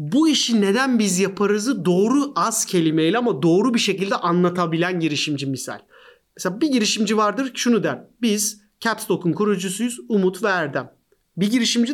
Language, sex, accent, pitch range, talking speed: Turkish, male, native, 165-230 Hz, 145 wpm